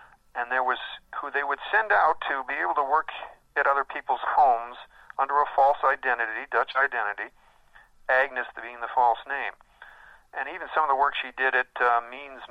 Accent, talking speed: American, 185 wpm